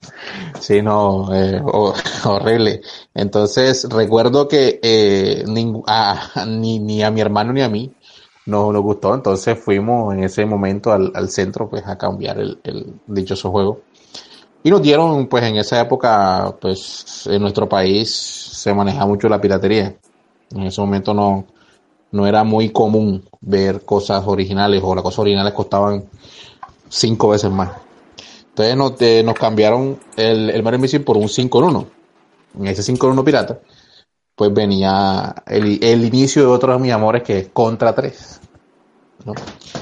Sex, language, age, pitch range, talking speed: male, Spanish, 30-49, 100-115 Hz, 165 wpm